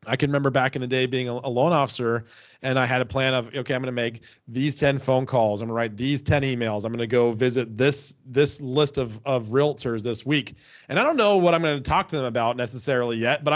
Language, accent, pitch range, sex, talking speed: English, American, 125-150 Hz, male, 270 wpm